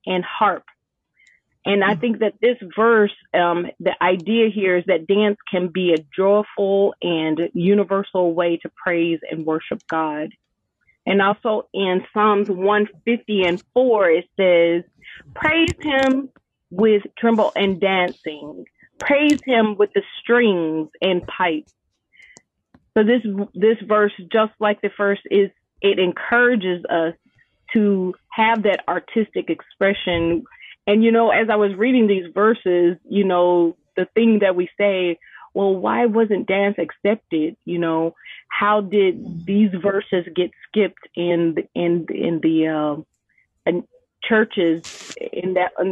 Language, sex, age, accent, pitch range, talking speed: English, female, 30-49, American, 175-215 Hz, 140 wpm